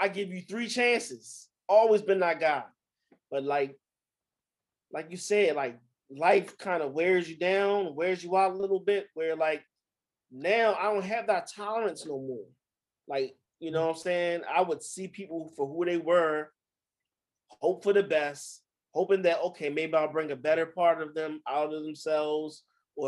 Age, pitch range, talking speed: 20-39, 145-190 Hz, 180 wpm